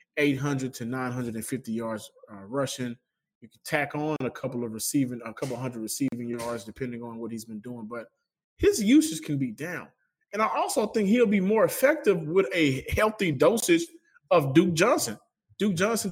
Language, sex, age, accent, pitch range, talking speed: English, male, 20-39, American, 130-185 Hz, 180 wpm